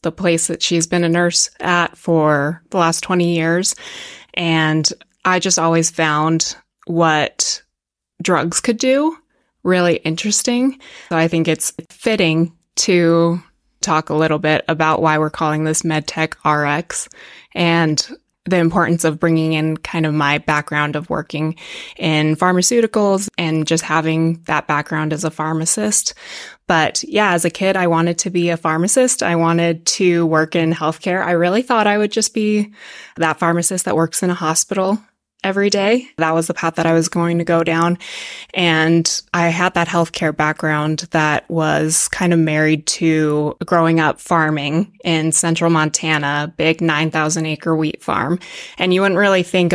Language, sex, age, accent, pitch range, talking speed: English, female, 20-39, American, 155-180 Hz, 165 wpm